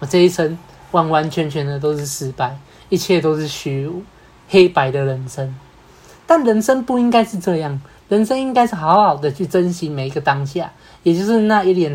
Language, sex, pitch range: Chinese, male, 150-195 Hz